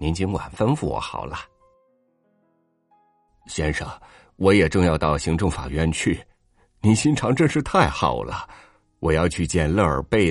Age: 50-69